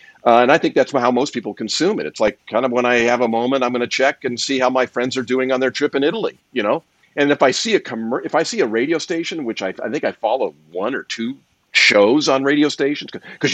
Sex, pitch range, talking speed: male, 115-145 Hz, 280 wpm